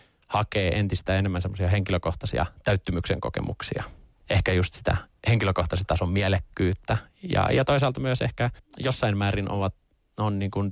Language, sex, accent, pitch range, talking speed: Finnish, male, native, 95-105 Hz, 130 wpm